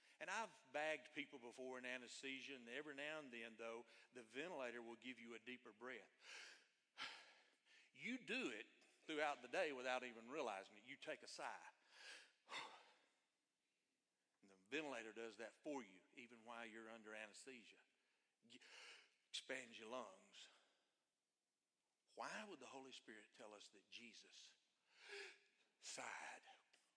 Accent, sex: American, male